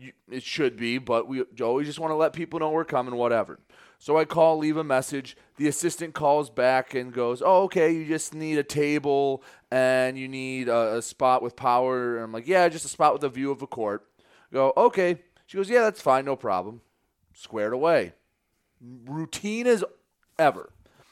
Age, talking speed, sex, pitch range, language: 30-49, 195 wpm, male, 125-165 Hz, English